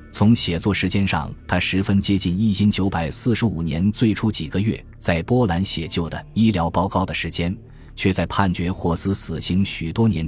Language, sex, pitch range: Chinese, male, 85-115 Hz